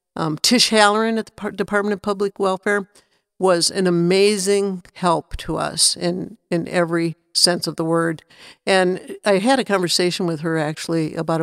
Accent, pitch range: American, 170-205 Hz